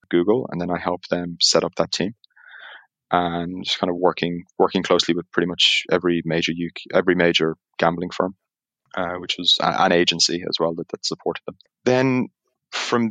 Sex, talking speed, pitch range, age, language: male, 185 wpm, 85-95 Hz, 20-39, English